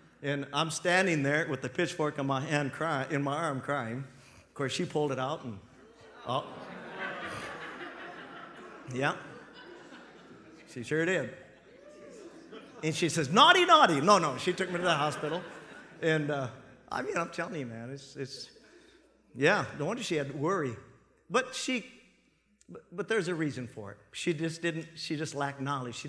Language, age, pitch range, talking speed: English, 50-69, 135-185 Hz, 170 wpm